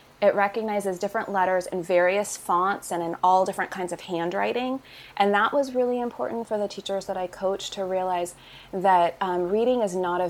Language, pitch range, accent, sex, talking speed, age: English, 175-195 Hz, American, female, 190 wpm, 20-39